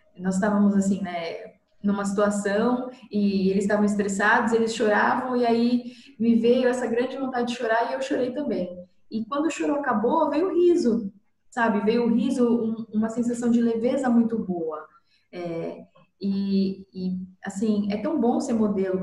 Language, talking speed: Portuguese, 165 wpm